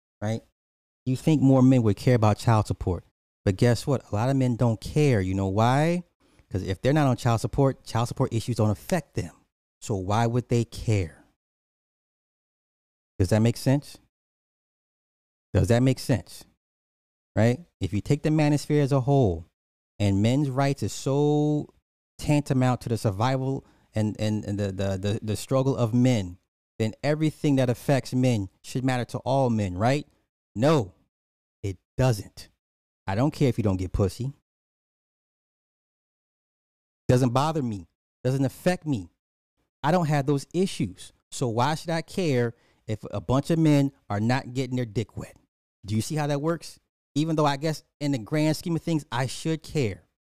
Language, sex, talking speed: English, male, 170 wpm